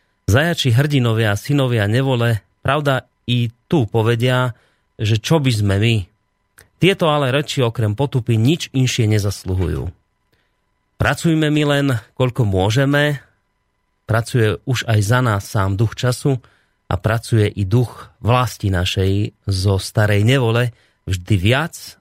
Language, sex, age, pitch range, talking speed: Slovak, male, 30-49, 100-130 Hz, 125 wpm